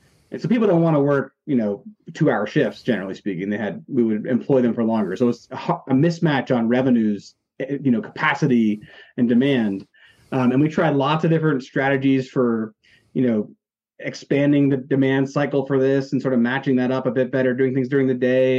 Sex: male